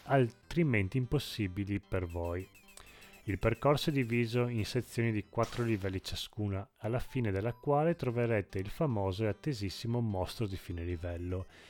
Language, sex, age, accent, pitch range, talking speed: Italian, male, 30-49, native, 95-125 Hz, 140 wpm